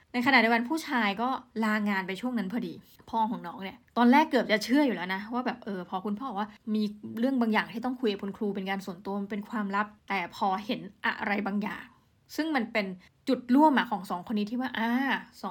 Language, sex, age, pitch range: Thai, female, 20-39, 200-245 Hz